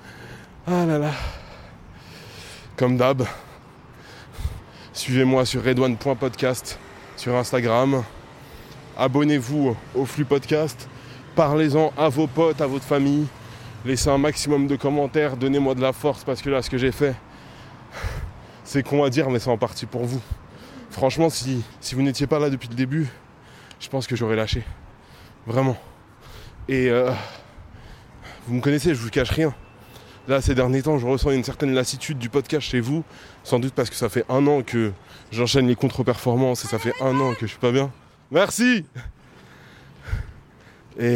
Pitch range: 110-135 Hz